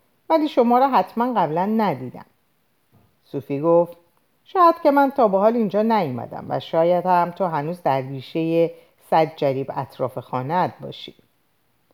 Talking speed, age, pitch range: 140 wpm, 50-69, 155-260 Hz